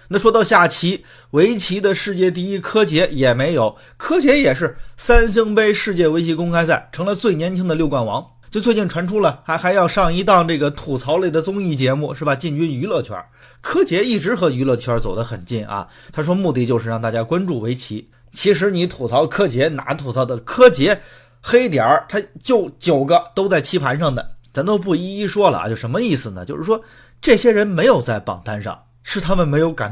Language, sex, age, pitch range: Chinese, male, 20-39, 120-195 Hz